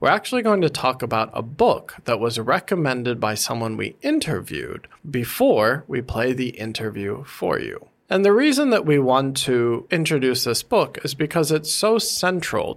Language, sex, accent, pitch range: Chinese, male, American, 115-165 Hz